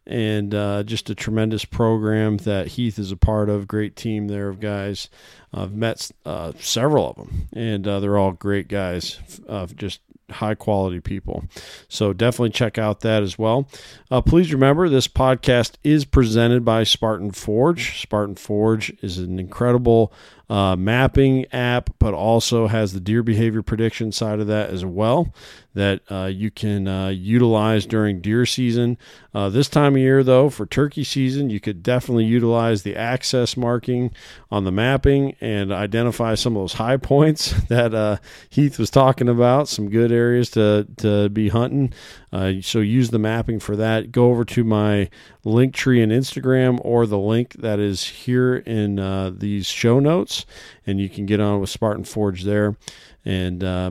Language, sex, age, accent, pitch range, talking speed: English, male, 40-59, American, 100-120 Hz, 175 wpm